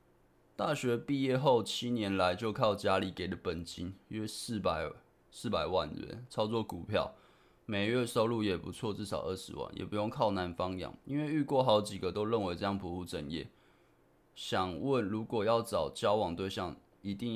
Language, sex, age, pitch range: Chinese, male, 20-39, 90-120 Hz